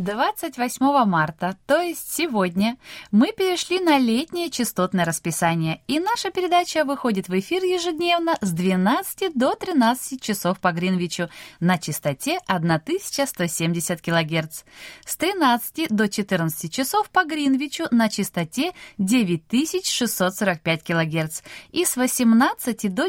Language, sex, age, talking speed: Russian, female, 20-39, 115 wpm